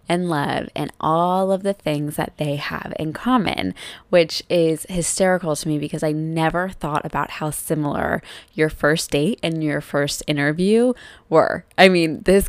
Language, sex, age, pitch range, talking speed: English, female, 20-39, 155-185 Hz, 170 wpm